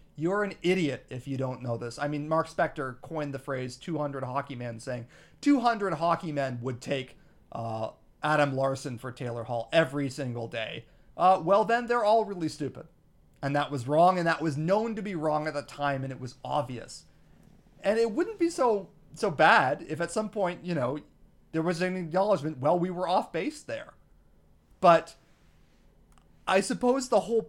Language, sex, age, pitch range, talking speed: English, male, 40-59, 130-180 Hz, 190 wpm